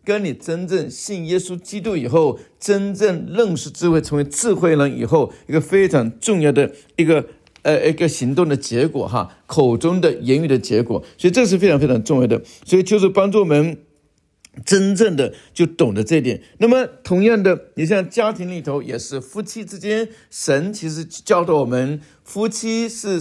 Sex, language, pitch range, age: male, Chinese, 140-190 Hz, 50-69